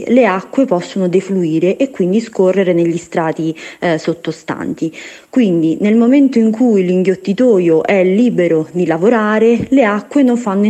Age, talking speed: 30-49, 140 wpm